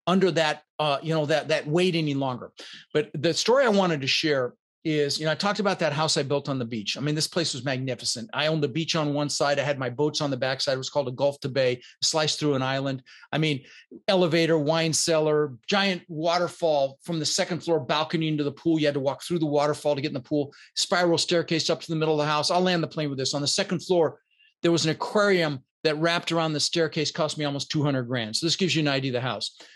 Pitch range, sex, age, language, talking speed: 140-175 Hz, male, 40-59, English, 260 wpm